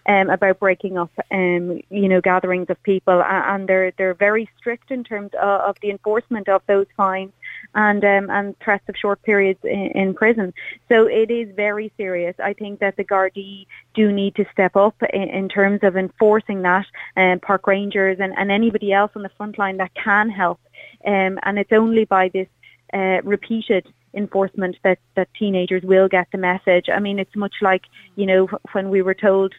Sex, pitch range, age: female, 185-205 Hz, 30-49